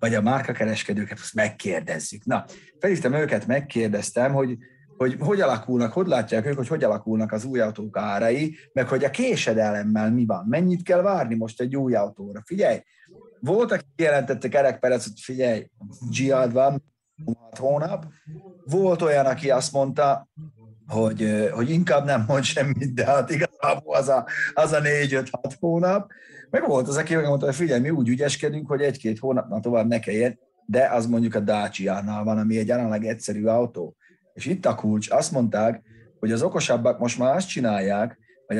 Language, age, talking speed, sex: Hungarian, 30-49, 170 wpm, male